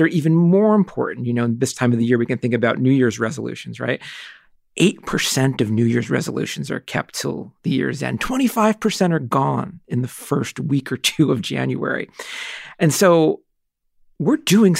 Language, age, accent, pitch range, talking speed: English, 40-59, American, 125-160 Hz, 185 wpm